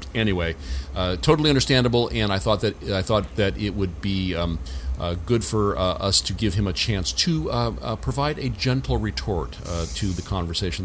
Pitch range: 80-105 Hz